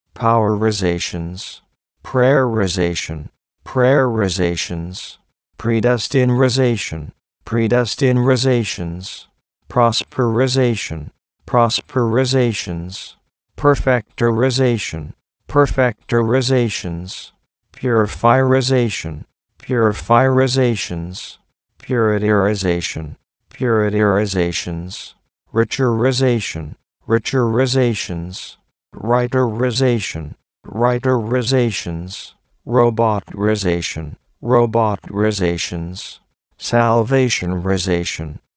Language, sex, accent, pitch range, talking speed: English, male, American, 90-125 Hz, 35 wpm